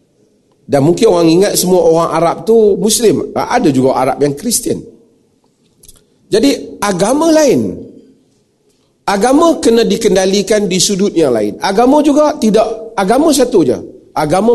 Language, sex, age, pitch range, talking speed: Malay, male, 40-59, 160-245 Hz, 130 wpm